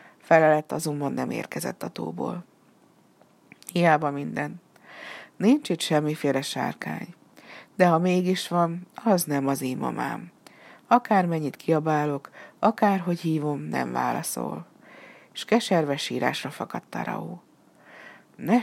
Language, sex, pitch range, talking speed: Hungarian, female, 150-200 Hz, 105 wpm